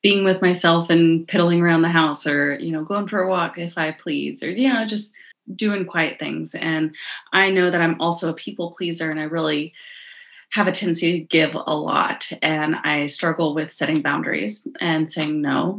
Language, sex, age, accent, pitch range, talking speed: English, female, 30-49, American, 160-225 Hz, 200 wpm